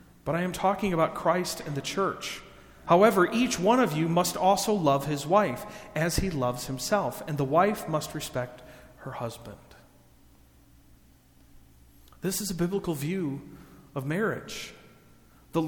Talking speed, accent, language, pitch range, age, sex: 145 wpm, American, English, 145-195 Hz, 40-59, male